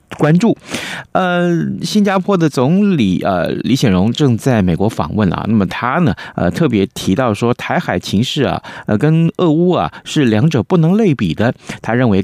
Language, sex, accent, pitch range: Chinese, male, native, 100-160 Hz